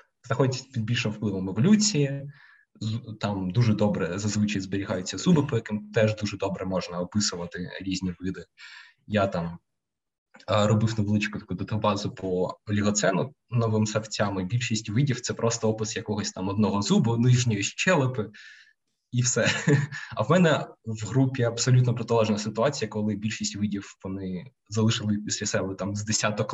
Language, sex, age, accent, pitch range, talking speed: Ukrainian, male, 20-39, native, 105-120 Hz, 140 wpm